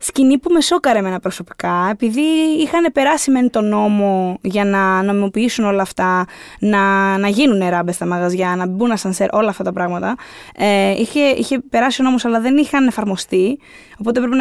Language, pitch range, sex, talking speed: Greek, 205-295 Hz, female, 175 wpm